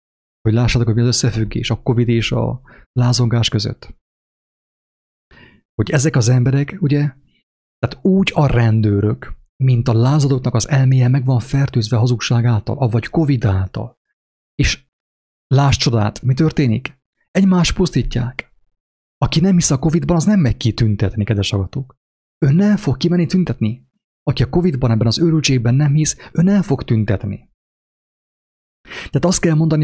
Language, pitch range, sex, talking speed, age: English, 115-145 Hz, male, 145 wpm, 30-49